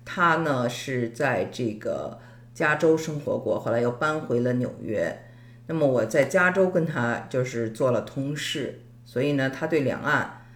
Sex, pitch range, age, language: female, 120-170 Hz, 50-69, Chinese